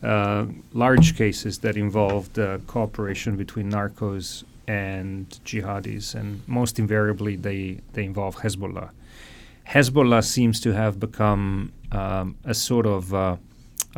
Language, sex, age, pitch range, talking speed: English, male, 40-59, 105-120 Hz, 120 wpm